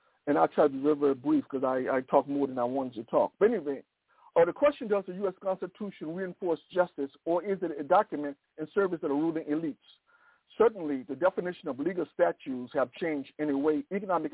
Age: 60-79